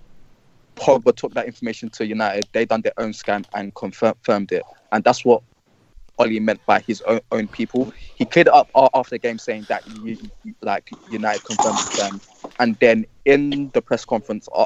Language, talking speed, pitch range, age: English, 180 wpm, 110-150 Hz, 20-39